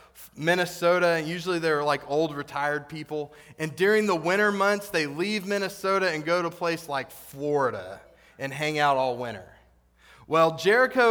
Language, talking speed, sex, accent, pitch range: English, 160 wpm, male, American, 145-205 Hz